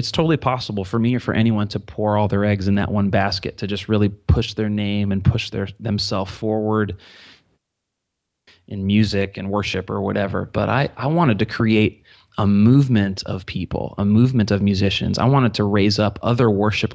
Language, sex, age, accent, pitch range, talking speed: English, male, 30-49, American, 100-110 Hz, 195 wpm